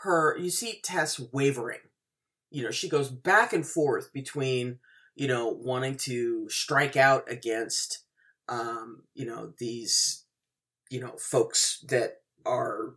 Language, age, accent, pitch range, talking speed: English, 30-49, American, 125-170 Hz, 135 wpm